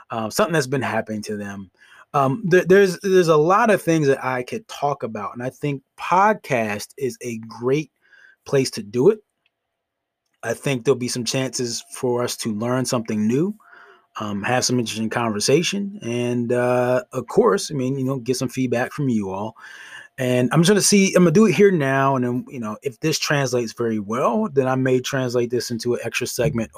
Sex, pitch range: male, 110-140 Hz